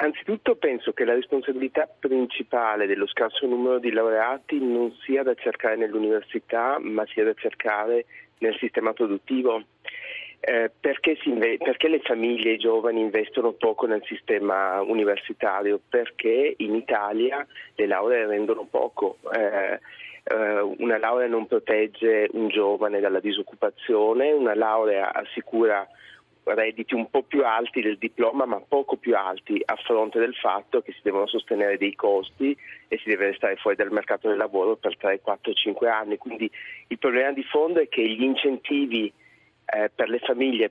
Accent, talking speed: native, 155 wpm